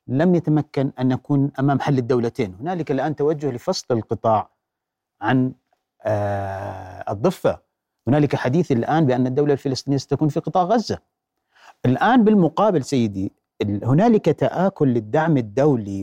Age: 40-59